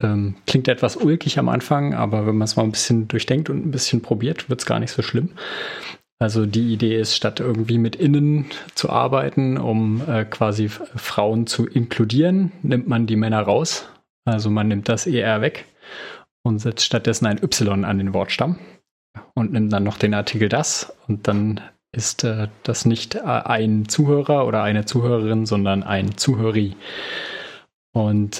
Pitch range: 110-130 Hz